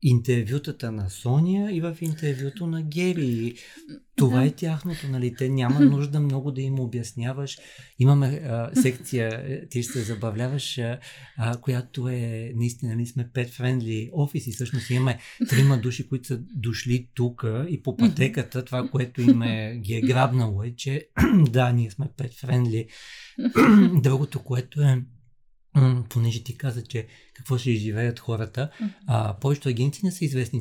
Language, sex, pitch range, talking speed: Bulgarian, male, 120-140 Hz, 140 wpm